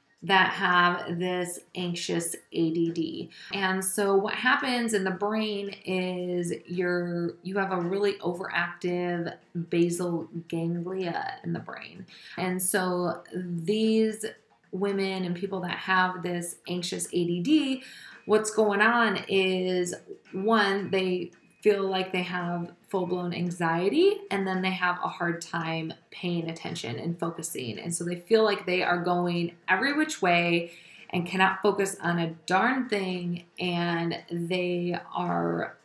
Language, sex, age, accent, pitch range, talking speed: English, female, 20-39, American, 170-195 Hz, 130 wpm